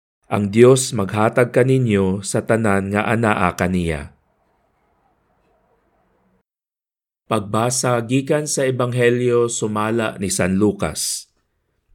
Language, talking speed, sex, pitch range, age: Filipino, 85 wpm, male, 100-125 Hz, 50-69